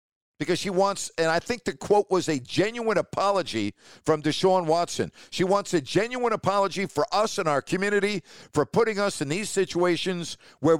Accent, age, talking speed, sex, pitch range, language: American, 50-69, 180 wpm, male, 150-205 Hz, English